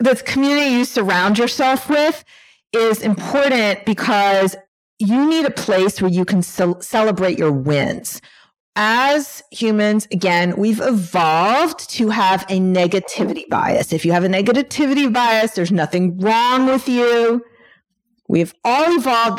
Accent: American